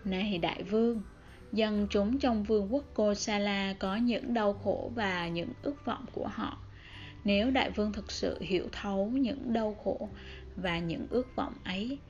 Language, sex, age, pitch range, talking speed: Vietnamese, female, 10-29, 185-225 Hz, 170 wpm